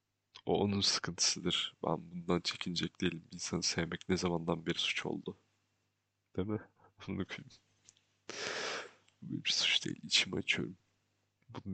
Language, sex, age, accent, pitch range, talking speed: Turkish, male, 30-49, native, 95-110 Hz, 130 wpm